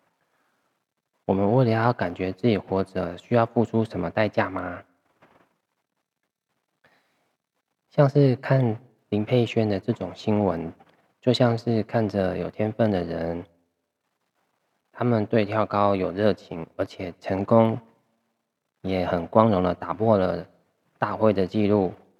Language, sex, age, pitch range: Chinese, male, 20-39, 95-115 Hz